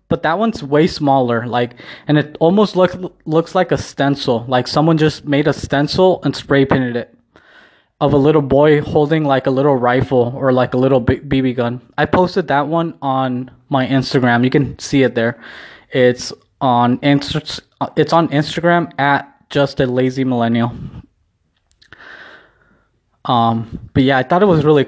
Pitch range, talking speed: 125-150 Hz, 165 wpm